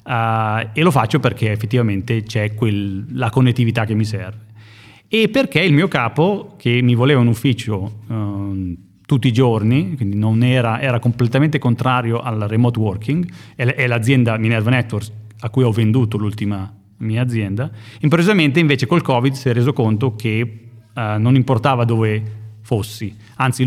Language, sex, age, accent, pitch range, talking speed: Italian, male, 30-49, native, 110-135 Hz, 155 wpm